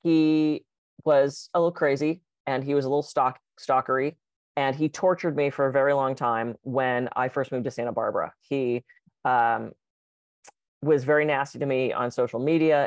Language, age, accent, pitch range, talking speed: English, 30-49, American, 130-160 Hz, 175 wpm